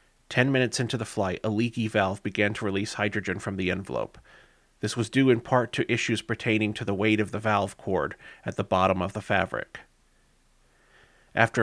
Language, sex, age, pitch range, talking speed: English, male, 30-49, 100-115 Hz, 190 wpm